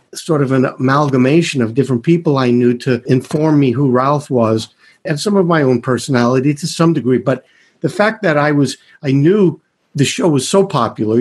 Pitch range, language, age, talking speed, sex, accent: 125-165 Hz, English, 50-69, 200 wpm, male, American